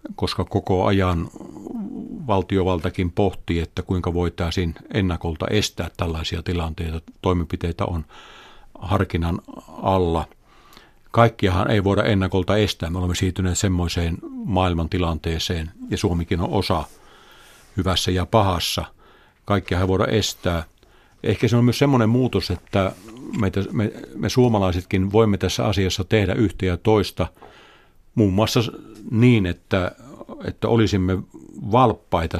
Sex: male